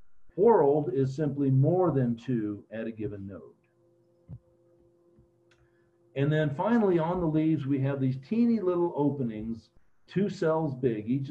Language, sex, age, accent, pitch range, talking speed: English, male, 50-69, American, 125-155 Hz, 140 wpm